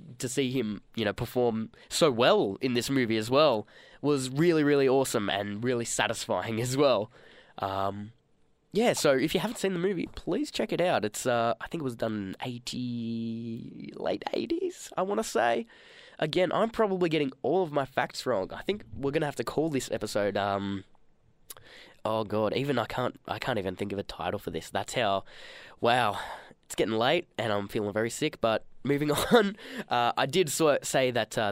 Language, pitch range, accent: English, 100-135 Hz, Australian